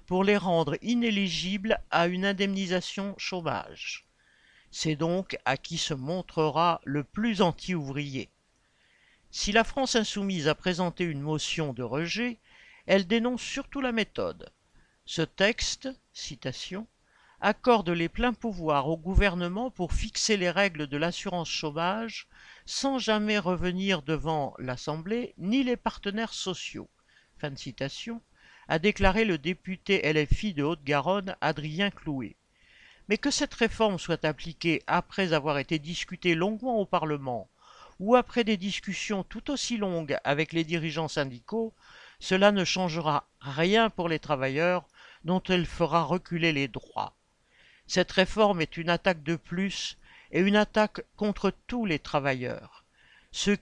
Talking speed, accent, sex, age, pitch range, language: 140 wpm, French, male, 50-69, 160-210 Hz, French